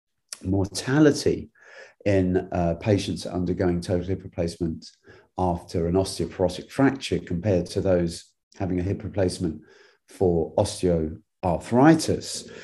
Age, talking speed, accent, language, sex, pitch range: 40-59, 100 wpm, British, English, male, 90-110 Hz